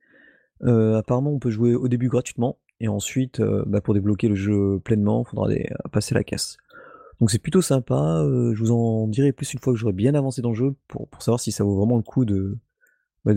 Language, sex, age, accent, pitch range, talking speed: French, male, 30-49, French, 105-135 Hz, 240 wpm